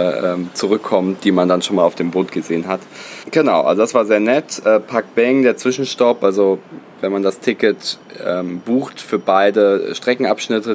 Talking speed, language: 175 wpm, German